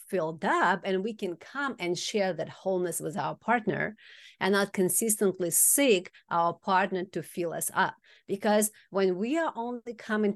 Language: English